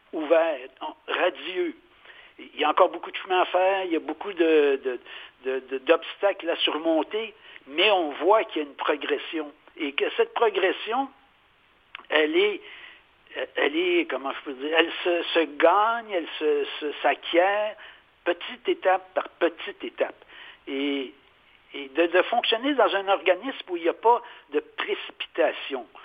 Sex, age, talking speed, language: male, 60-79, 160 wpm, French